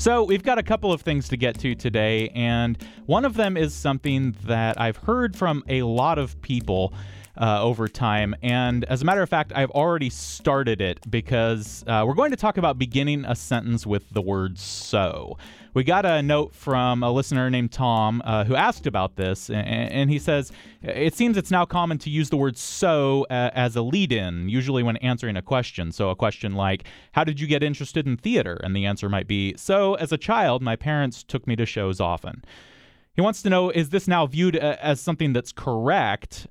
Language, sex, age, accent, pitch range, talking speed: English, male, 30-49, American, 110-150 Hz, 210 wpm